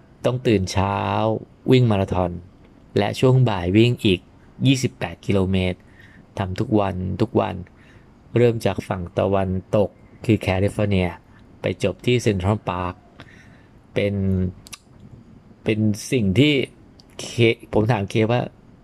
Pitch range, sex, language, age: 100-120 Hz, male, English, 20-39